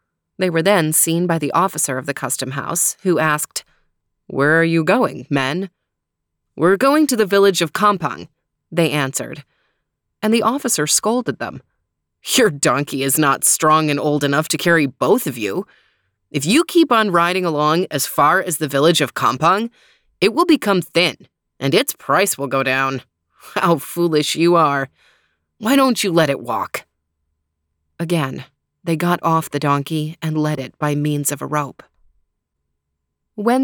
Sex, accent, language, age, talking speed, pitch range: female, American, English, 30-49, 165 wpm, 145-215 Hz